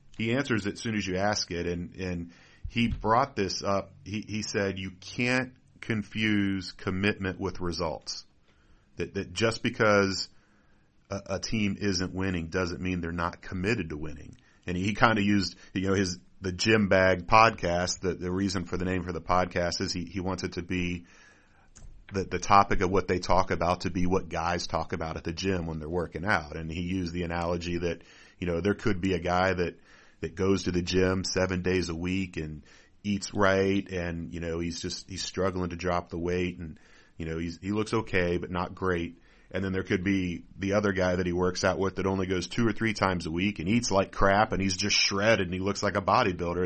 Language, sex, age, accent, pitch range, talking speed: English, male, 40-59, American, 90-105 Hz, 220 wpm